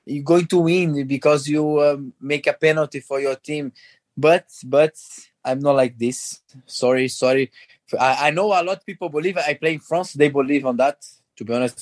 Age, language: 20-39, English